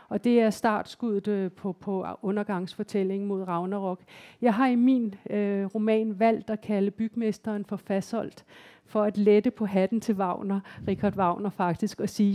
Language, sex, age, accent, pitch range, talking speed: Danish, female, 50-69, native, 195-230 Hz, 160 wpm